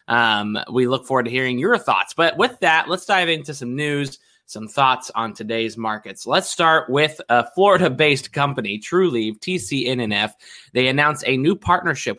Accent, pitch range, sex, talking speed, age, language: American, 115-150 Hz, male, 165 wpm, 20-39, English